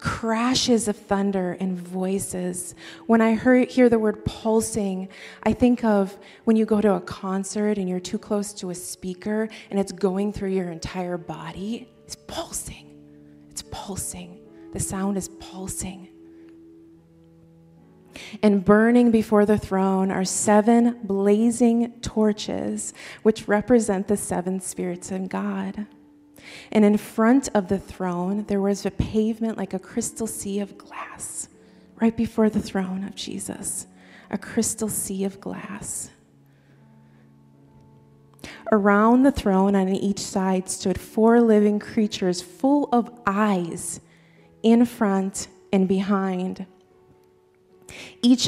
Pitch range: 180-220 Hz